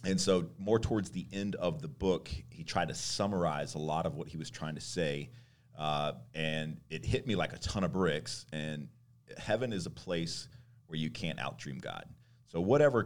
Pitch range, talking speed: 80-120 Hz, 200 wpm